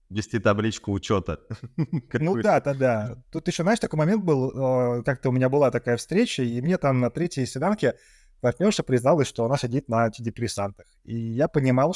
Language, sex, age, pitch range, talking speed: Russian, male, 20-39, 120-145 Hz, 175 wpm